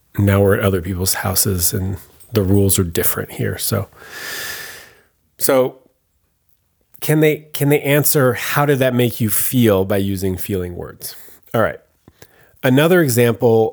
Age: 30-49